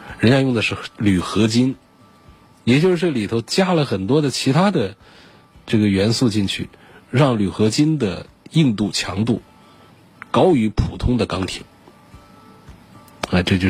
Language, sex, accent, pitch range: Chinese, male, native, 100-135 Hz